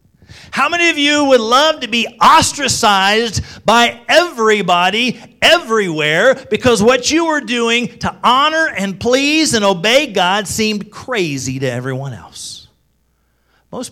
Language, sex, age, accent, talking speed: English, male, 40-59, American, 130 wpm